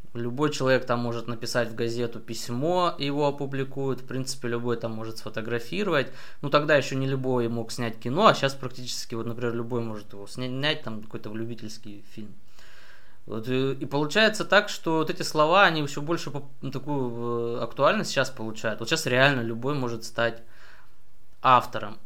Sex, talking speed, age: male, 160 wpm, 20-39